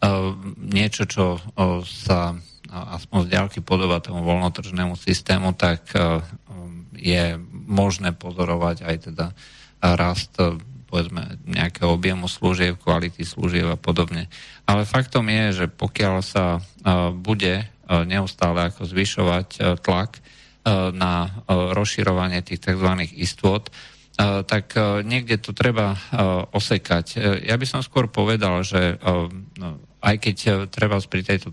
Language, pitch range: Czech, 90-105 Hz